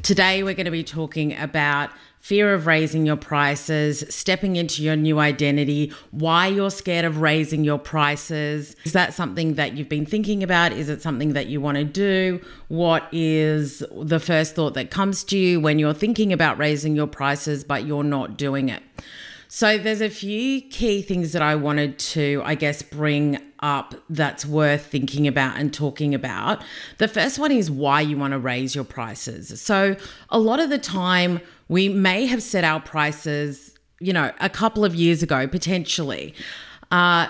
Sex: female